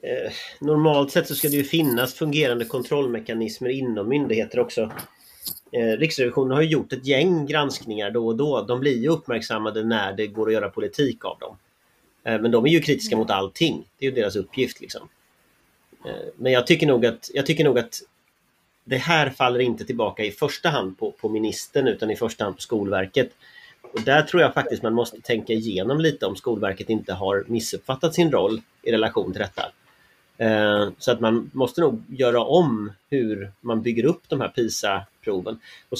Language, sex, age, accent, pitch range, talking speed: Swedish, male, 30-49, native, 110-145 Hz, 180 wpm